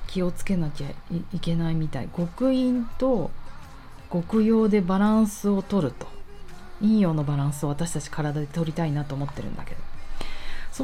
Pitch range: 160-220 Hz